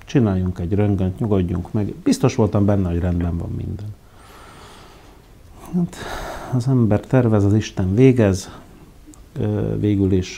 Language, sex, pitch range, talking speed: Hungarian, male, 90-110 Hz, 120 wpm